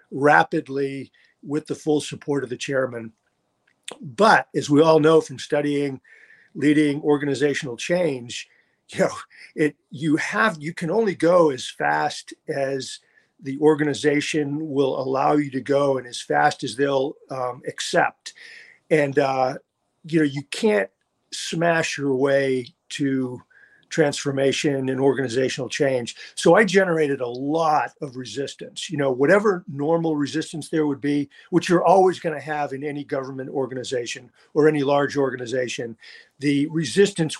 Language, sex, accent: English, male, American